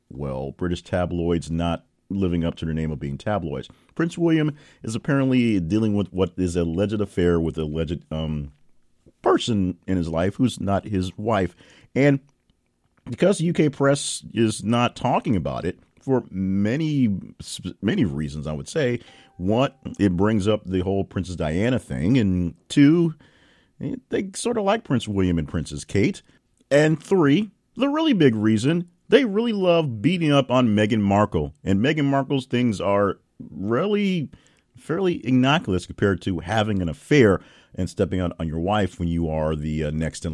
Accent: American